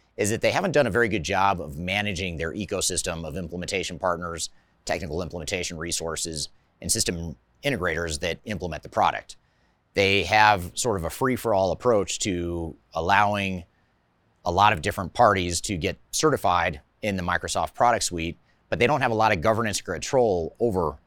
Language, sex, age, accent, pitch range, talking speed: English, male, 30-49, American, 85-105 Hz, 165 wpm